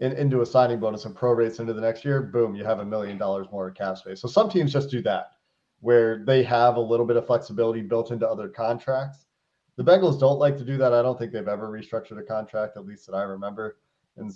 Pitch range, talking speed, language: 115-135 Hz, 245 wpm, English